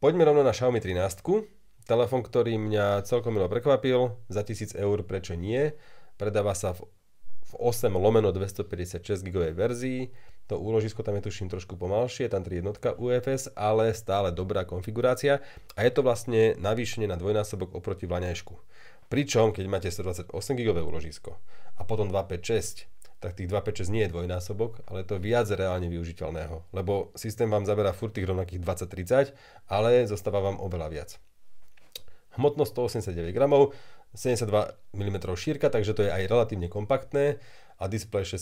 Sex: male